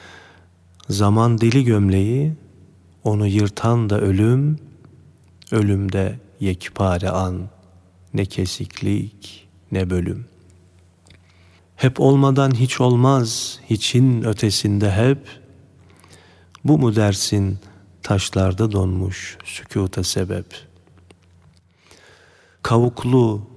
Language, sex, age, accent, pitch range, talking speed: Turkish, male, 40-59, native, 95-115 Hz, 75 wpm